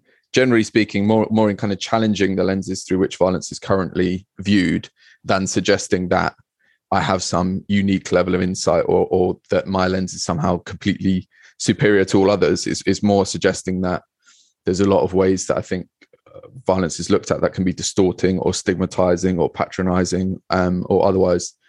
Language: English